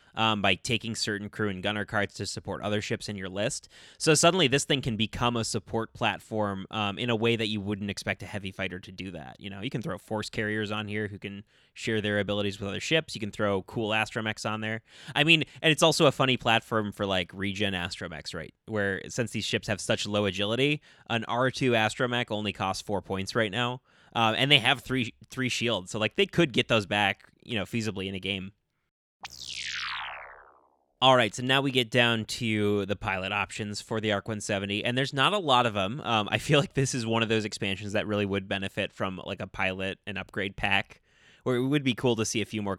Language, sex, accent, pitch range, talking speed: English, male, American, 100-120 Hz, 230 wpm